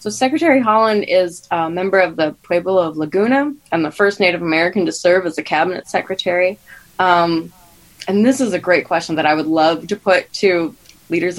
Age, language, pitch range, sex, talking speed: 20-39, English, 160-190 Hz, female, 195 wpm